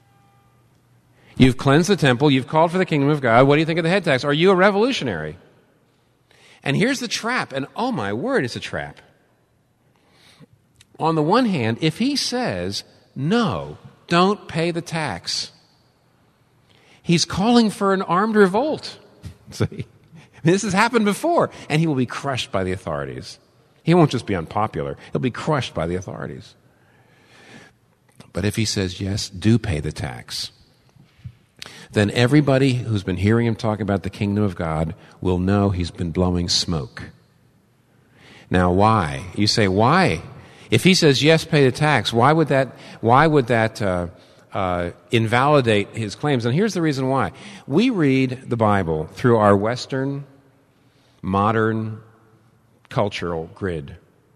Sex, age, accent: male, 50-69, American